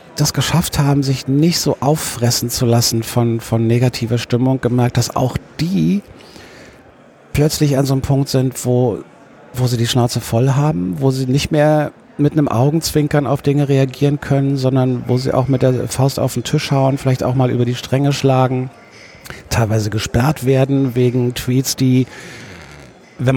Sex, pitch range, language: male, 120-140 Hz, German